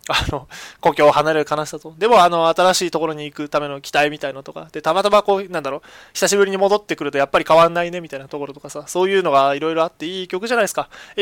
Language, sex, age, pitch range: Japanese, male, 20-39, 140-215 Hz